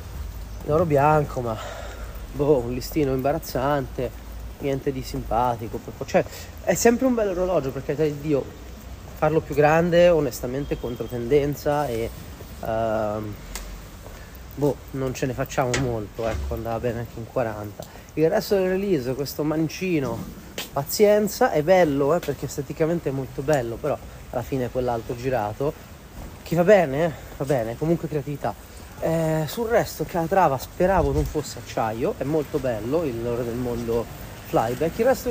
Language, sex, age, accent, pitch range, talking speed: Italian, male, 30-49, native, 110-155 Hz, 145 wpm